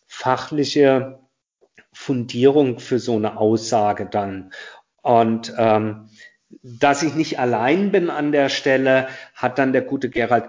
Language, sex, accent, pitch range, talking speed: German, male, German, 110-125 Hz, 125 wpm